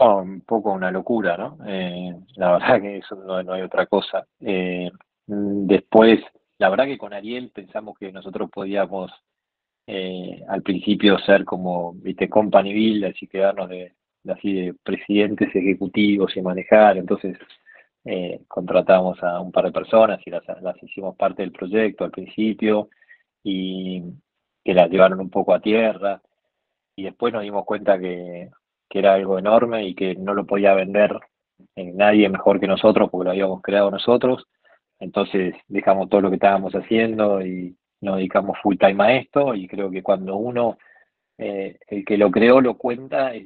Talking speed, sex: 165 wpm, male